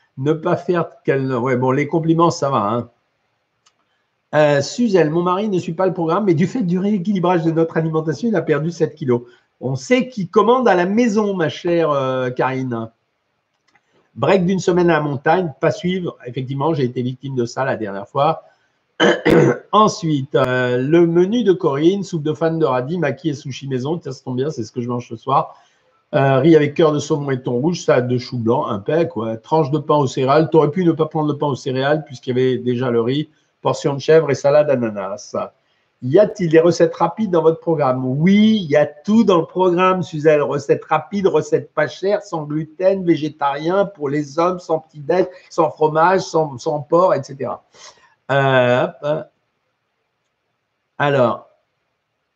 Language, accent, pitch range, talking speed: French, French, 135-175 Hz, 195 wpm